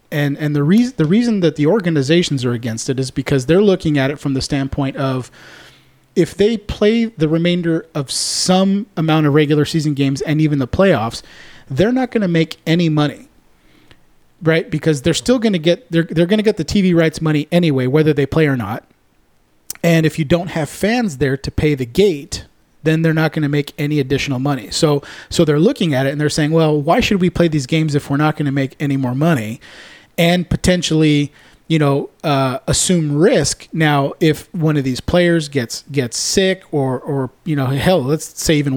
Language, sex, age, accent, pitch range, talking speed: English, male, 30-49, American, 140-170 Hz, 210 wpm